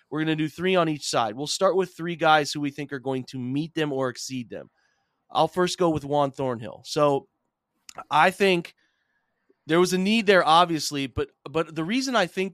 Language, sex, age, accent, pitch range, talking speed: English, male, 30-49, American, 140-165 Hz, 215 wpm